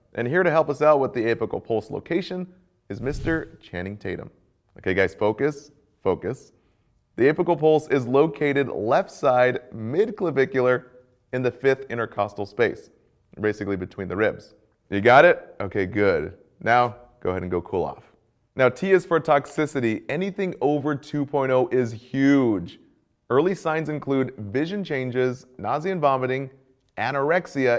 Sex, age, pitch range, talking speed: male, 30-49, 110-150 Hz, 145 wpm